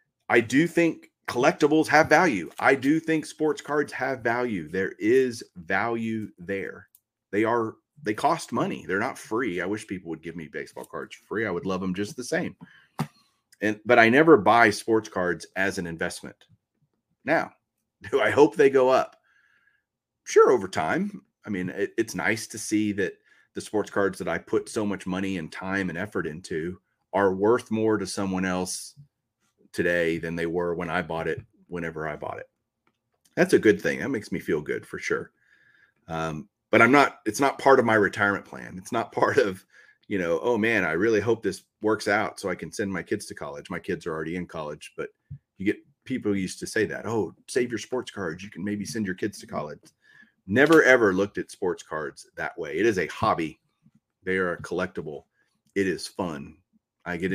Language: English